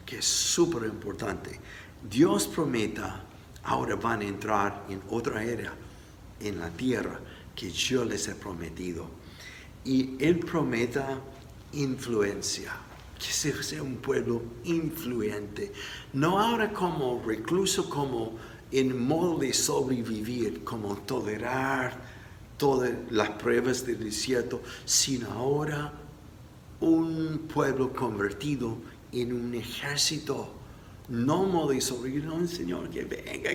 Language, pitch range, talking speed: Spanish, 110-145 Hz, 115 wpm